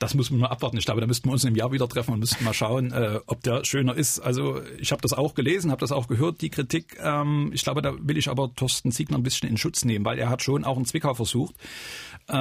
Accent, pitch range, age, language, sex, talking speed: German, 115-135 Hz, 40-59, German, male, 285 wpm